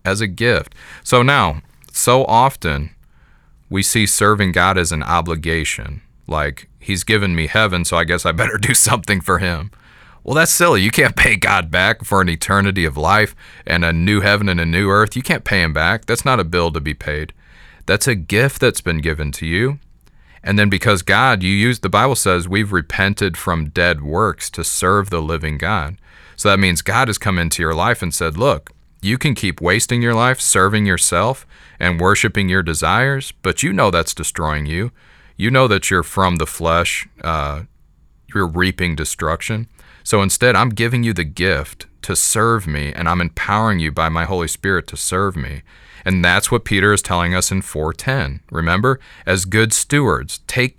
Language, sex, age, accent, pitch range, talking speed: English, male, 30-49, American, 85-110 Hz, 195 wpm